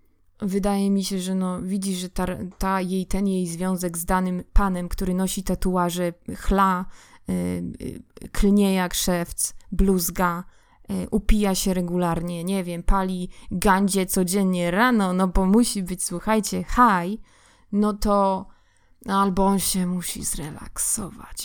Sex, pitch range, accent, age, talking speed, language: female, 180-205 Hz, native, 20-39, 135 wpm, Polish